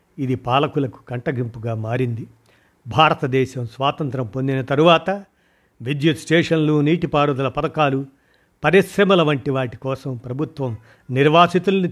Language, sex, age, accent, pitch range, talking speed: Telugu, male, 50-69, native, 130-160 Hz, 90 wpm